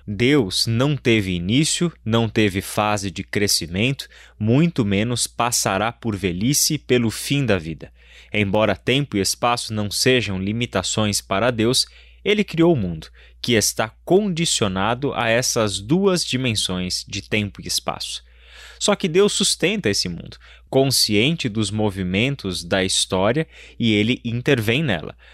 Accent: Brazilian